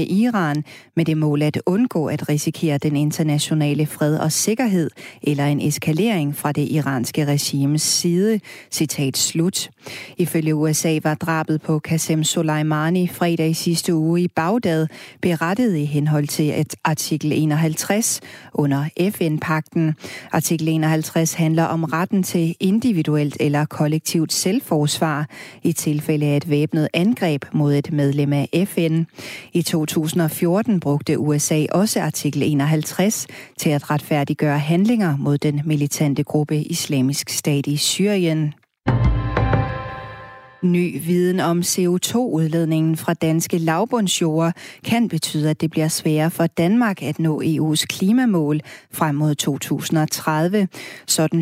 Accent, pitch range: native, 150-170 Hz